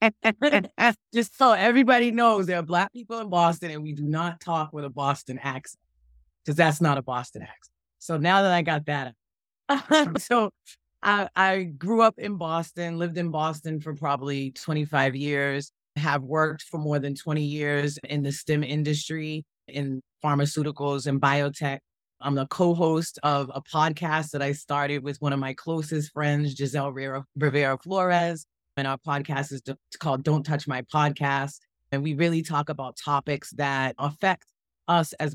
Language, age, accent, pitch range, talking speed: English, 30-49, American, 140-170 Hz, 170 wpm